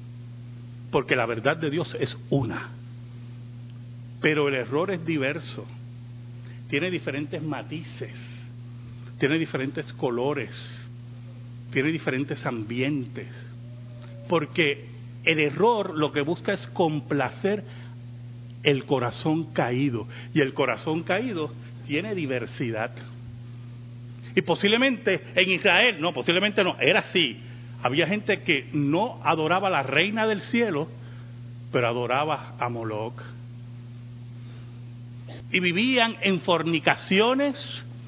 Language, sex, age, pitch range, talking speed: Spanish, male, 40-59, 120-180 Hz, 100 wpm